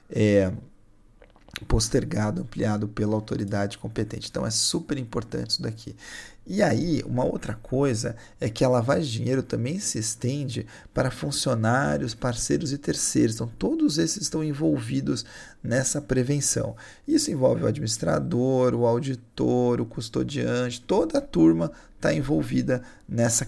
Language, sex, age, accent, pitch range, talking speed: Portuguese, male, 40-59, Brazilian, 110-145 Hz, 135 wpm